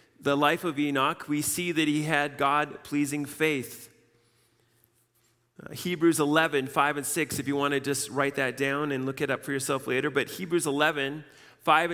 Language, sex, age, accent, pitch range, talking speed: English, male, 40-59, American, 140-185 Hz, 180 wpm